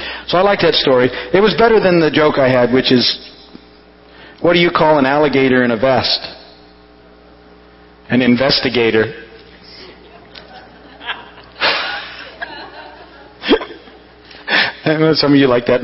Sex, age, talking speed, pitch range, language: male, 50-69, 125 wpm, 125-185 Hz, English